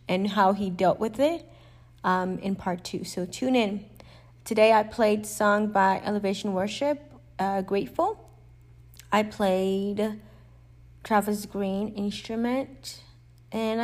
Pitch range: 185-220 Hz